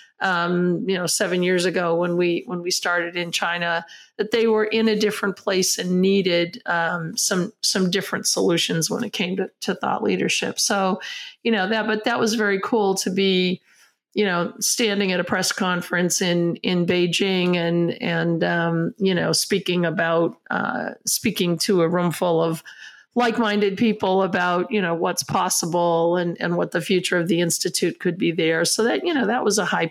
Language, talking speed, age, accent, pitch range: English, 190 wpm, 50-69, American, 175-210 Hz